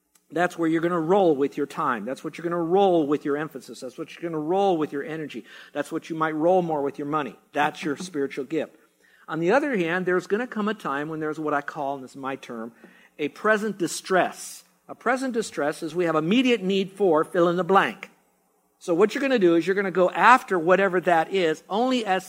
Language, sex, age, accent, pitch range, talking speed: English, male, 50-69, American, 150-195 Hz, 250 wpm